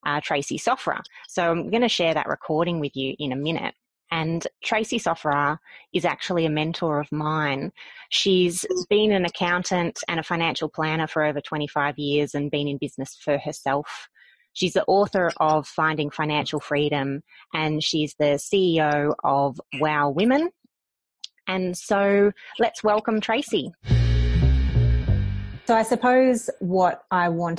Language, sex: English, female